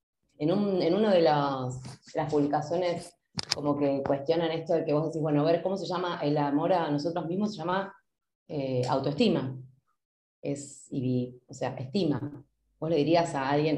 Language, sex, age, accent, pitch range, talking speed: Spanish, female, 20-39, Argentinian, 140-175 Hz, 160 wpm